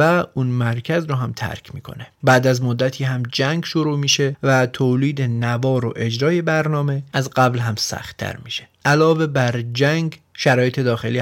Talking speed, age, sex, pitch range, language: 160 wpm, 30-49, male, 115-145 Hz, Persian